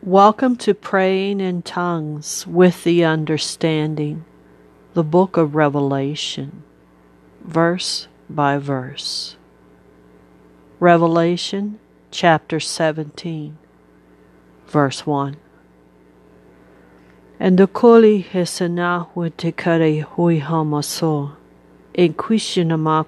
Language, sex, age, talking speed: English, female, 50-69, 65 wpm